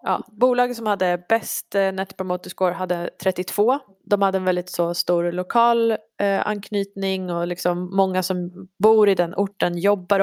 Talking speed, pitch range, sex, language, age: 145 wpm, 180-210 Hz, female, Swedish, 20-39